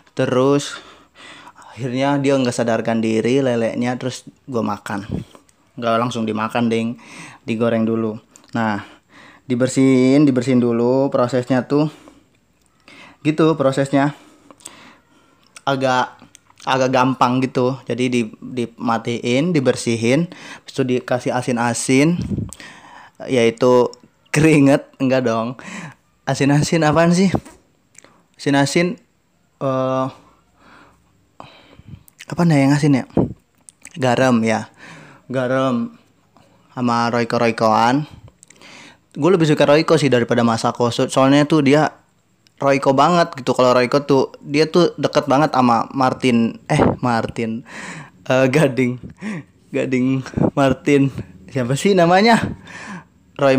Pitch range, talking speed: 120-140 Hz, 100 wpm